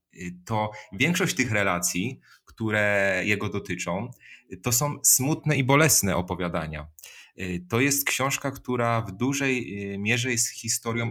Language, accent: Polish, native